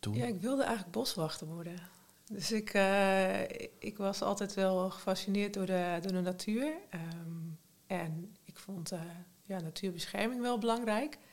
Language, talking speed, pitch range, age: Dutch, 150 wpm, 180-215 Hz, 40-59